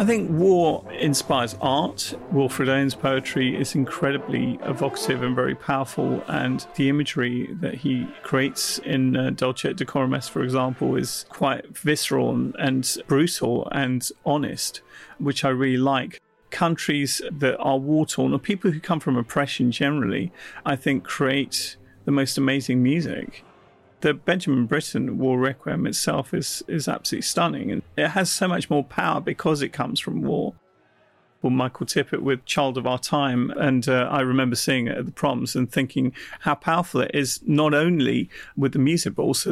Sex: male